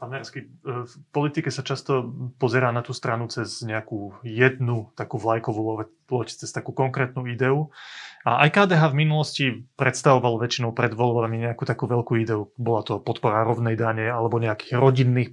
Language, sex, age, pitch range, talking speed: Slovak, male, 30-49, 115-145 Hz, 155 wpm